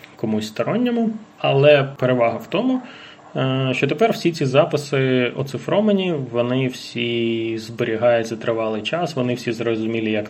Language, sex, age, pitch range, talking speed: Ukrainian, male, 20-39, 120-160 Hz, 120 wpm